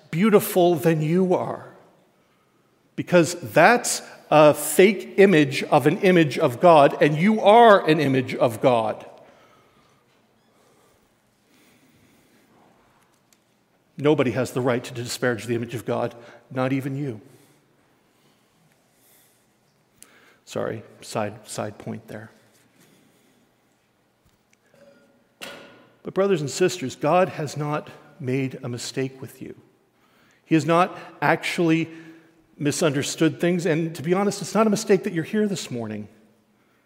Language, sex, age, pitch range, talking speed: English, male, 50-69, 135-190 Hz, 115 wpm